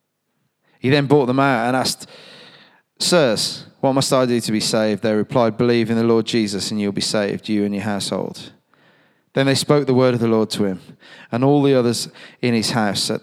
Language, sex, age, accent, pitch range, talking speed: English, male, 30-49, British, 110-150 Hz, 220 wpm